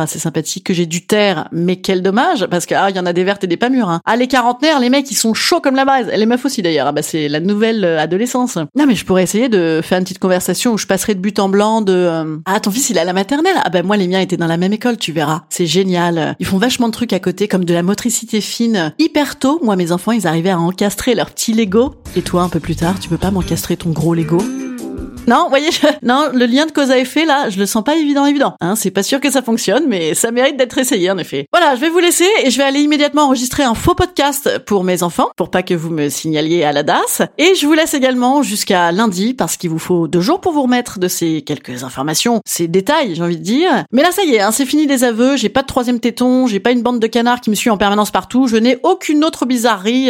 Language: French